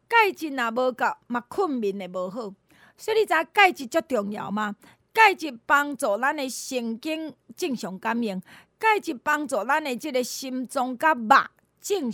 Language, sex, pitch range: Chinese, female, 220-315 Hz